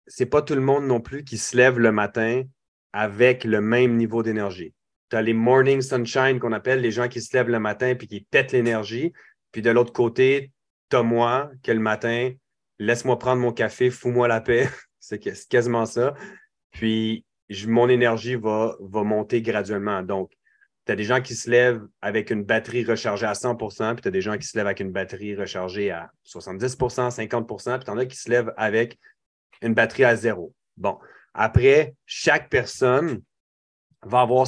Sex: male